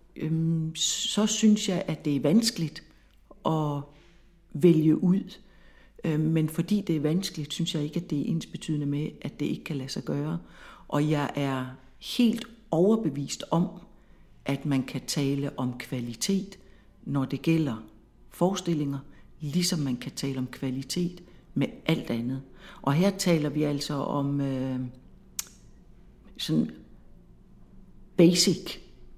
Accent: native